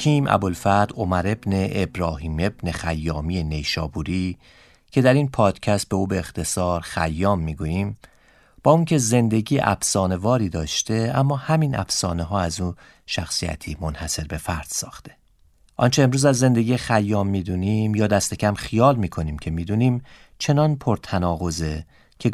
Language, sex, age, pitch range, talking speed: Persian, male, 40-59, 85-110 Hz, 140 wpm